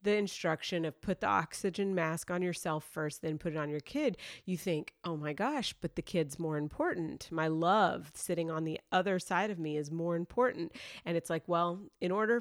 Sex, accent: female, American